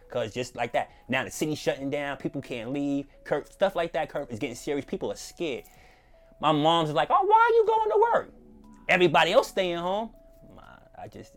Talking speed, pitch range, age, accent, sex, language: 205 wpm, 120-160 Hz, 30-49, American, male, English